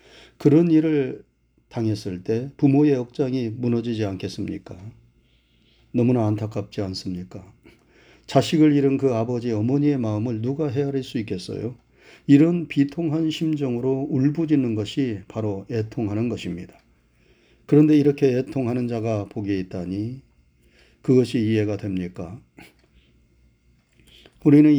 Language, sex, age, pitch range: Korean, male, 40-59, 110-140 Hz